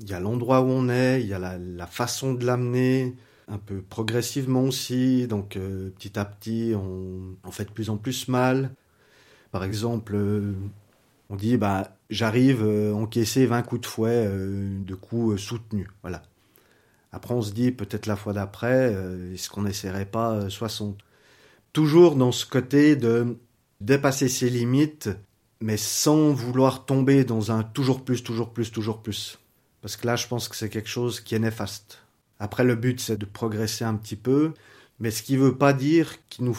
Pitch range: 105-125 Hz